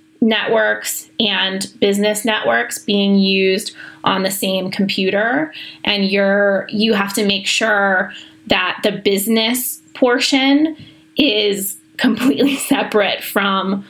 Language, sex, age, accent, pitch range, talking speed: English, female, 20-39, American, 195-235 Hz, 110 wpm